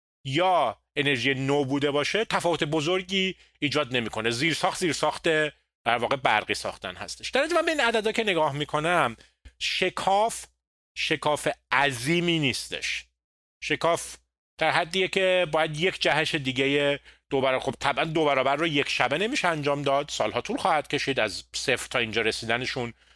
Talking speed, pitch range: 145 wpm, 115-170 Hz